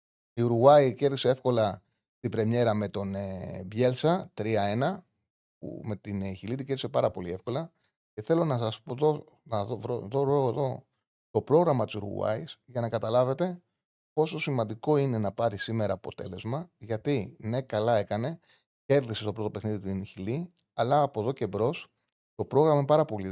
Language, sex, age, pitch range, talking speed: Greek, male, 30-49, 110-150 Hz, 165 wpm